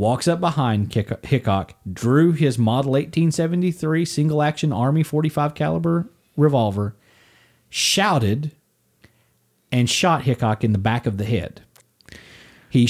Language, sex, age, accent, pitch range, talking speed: English, male, 40-59, American, 110-150 Hz, 115 wpm